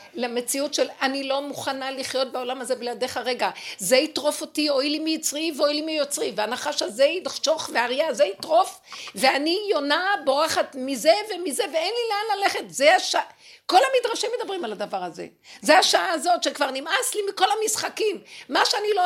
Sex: female